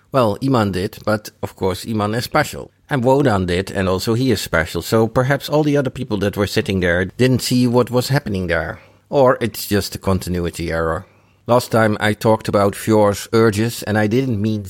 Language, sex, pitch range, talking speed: English, male, 95-115 Hz, 205 wpm